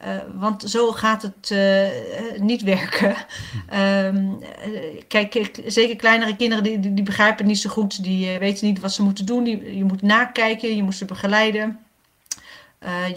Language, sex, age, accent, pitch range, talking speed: Dutch, female, 40-59, Dutch, 200-230 Hz, 175 wpm